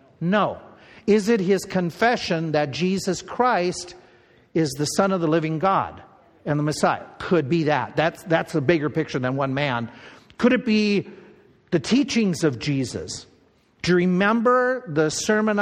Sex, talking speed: male, 160 wpm